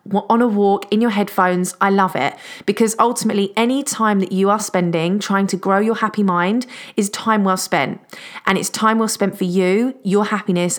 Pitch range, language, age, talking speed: 185-230 Hz, English, 30-49, 200 wpm